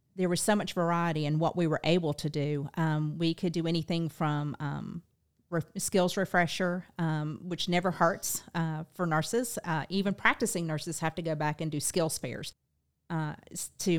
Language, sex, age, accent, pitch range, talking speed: English, female, 40-59, American, 155-180 Hz, 185 wpm